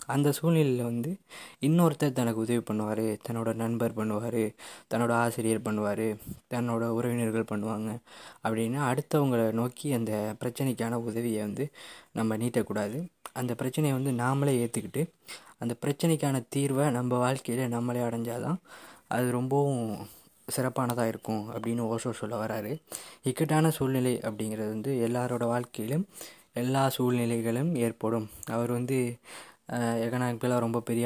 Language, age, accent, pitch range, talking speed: Tamil, 20-39, native, 115-135 Hz, 115 wpm